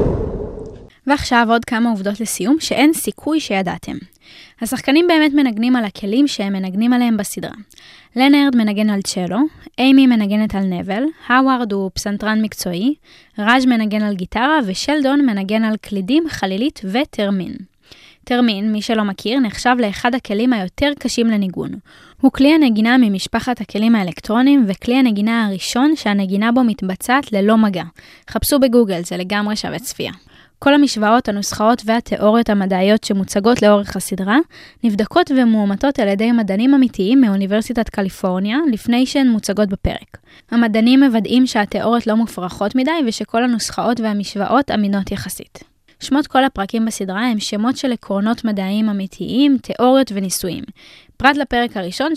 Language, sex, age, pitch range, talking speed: Hebrew, female, 10-29, 205-255 Hz, 130 wpm